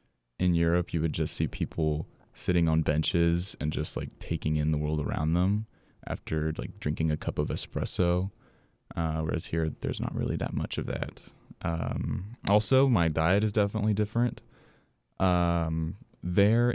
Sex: male